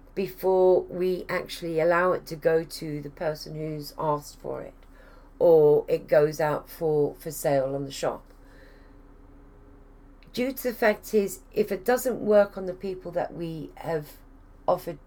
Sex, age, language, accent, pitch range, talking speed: female, 40-59, English, British, 140-185 Hz, 160 wpm